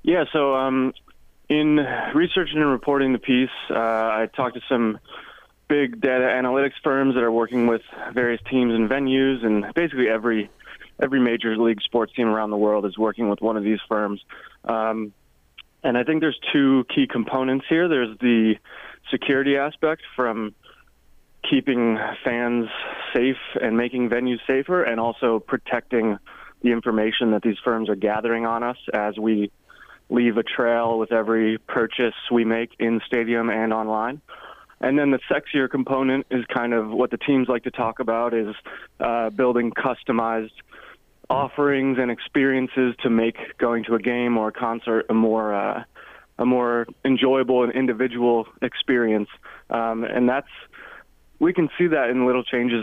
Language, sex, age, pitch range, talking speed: English, male, 20-39, 110-130 Hz, 160 wpm